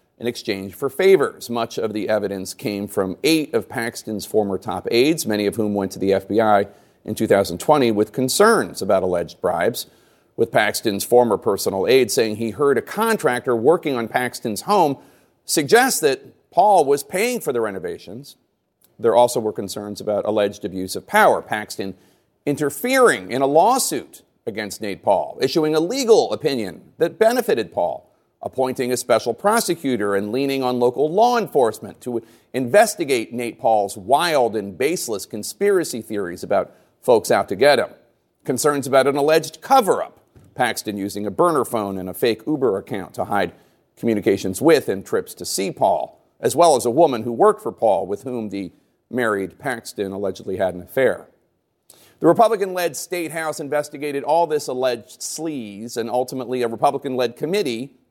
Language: English